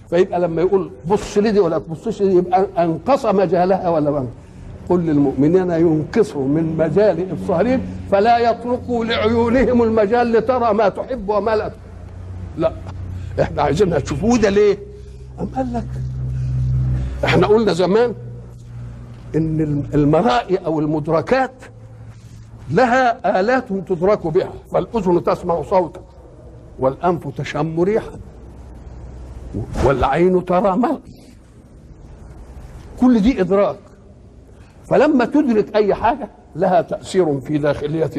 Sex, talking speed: male, 105 wpm